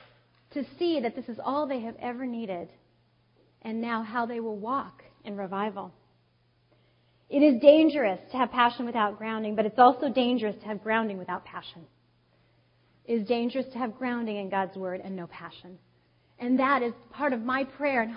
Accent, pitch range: American, 215-295 Hz